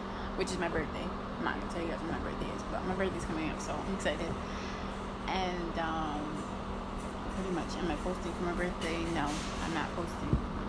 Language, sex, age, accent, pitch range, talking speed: English, female, 20-39, American, 70-85 Hz, 200 wpm